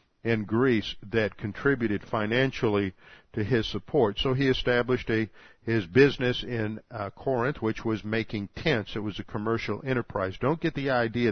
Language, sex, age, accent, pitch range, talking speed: English, male, 50-69, American, 105-130 Hz, 160 wpm